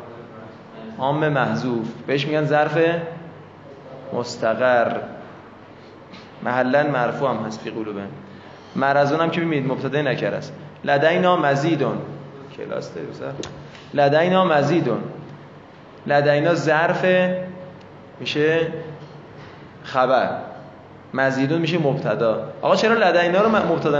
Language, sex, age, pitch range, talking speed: Persian, male, 20-39, 130-165 Hz, 90 wpm